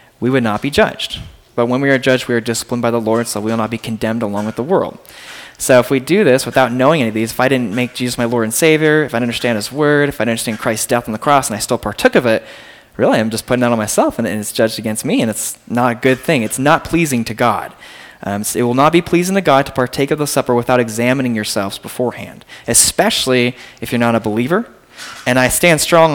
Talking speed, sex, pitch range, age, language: 270 wpm, male, 115-135 Hz, 20-39, English